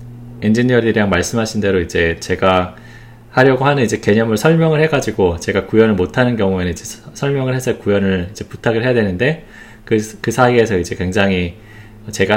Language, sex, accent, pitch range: Korean, male, native, 95-120 Hz